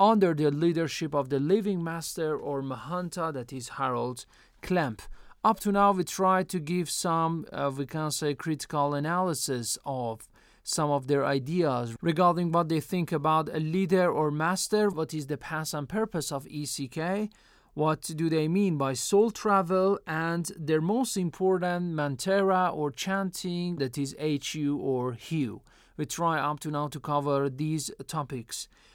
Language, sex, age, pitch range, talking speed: Persian, male, 40-59, 145-190 Hz, 160 wpm